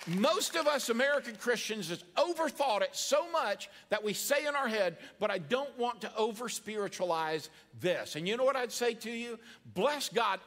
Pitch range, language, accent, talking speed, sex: 185-245 Hz, English, American, 190 wpm, male